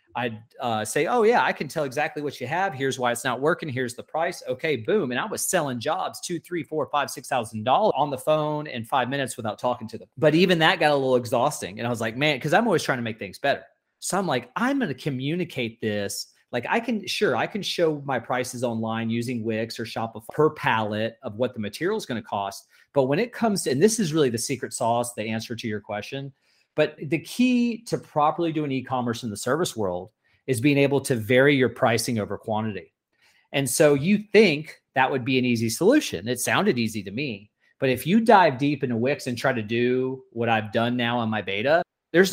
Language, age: English, 30-49